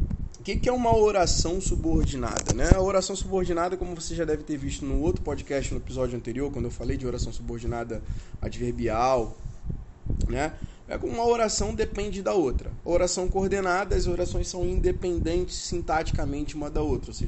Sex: male